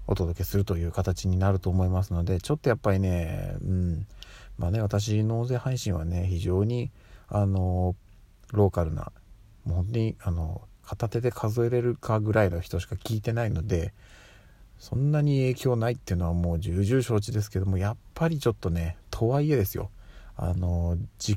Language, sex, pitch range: Japanese, male, 90-115 Hz